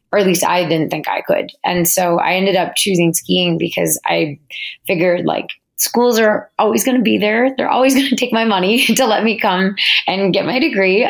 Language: English